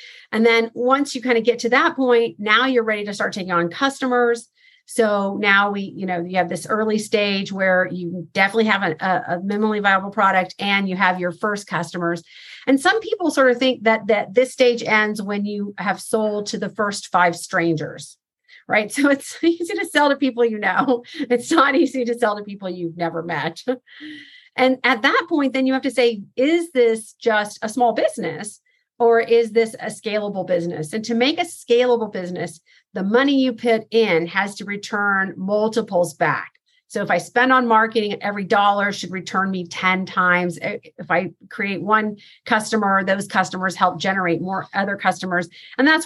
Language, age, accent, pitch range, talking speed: English, 40-59, American, 185-245 Hz, 190 wpm